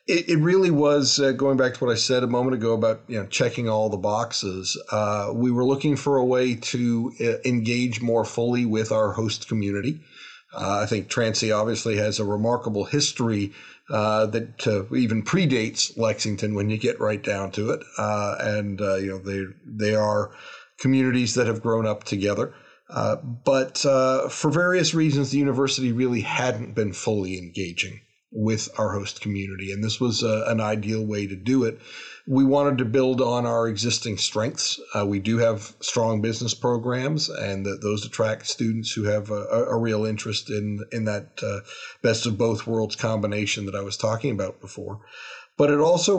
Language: English